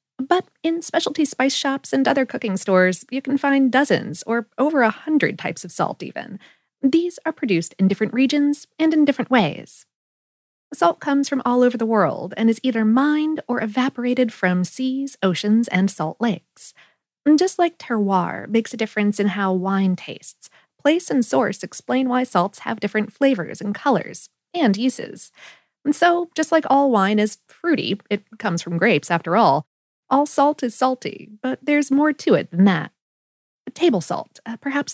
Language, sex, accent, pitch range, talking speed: English, female, American, 195-275 Hz, 175 wpm